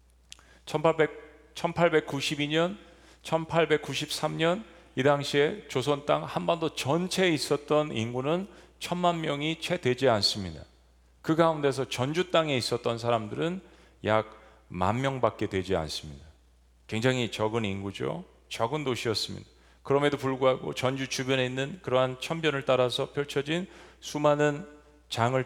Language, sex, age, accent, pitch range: Korean, male, 40-59, native, 115-155 Hz